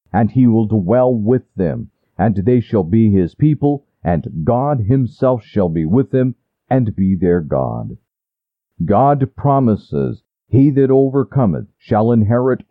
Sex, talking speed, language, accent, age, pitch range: male, 140 wpm, English, American, 50-69, 100-130 Hz